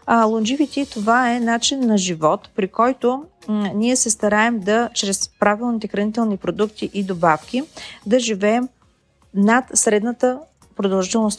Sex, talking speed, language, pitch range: female, 120 wpm, Bulgarian, 195-240 Hz